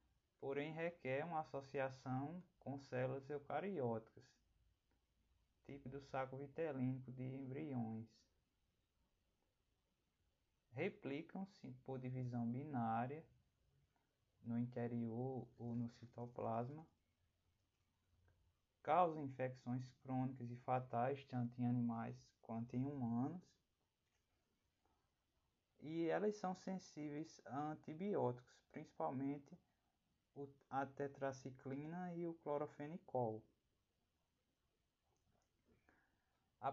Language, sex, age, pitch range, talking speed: Portuguese, male, 20-39, 115-145 Hz, 75 wpm